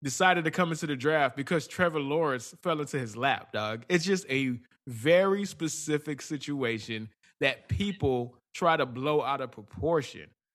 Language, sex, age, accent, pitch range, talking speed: English, male, 20-39, American, 130-165 Hz, 160 wpm